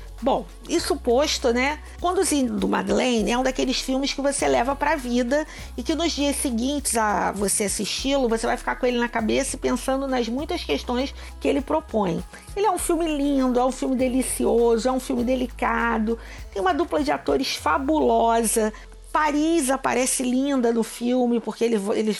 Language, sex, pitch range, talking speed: Portuguese, female, 230-285 Hz, 175 wpm